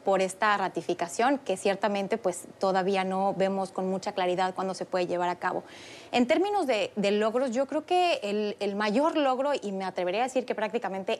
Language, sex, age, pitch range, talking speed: English, female, 30-49, 190-240 Hz, 200 wpm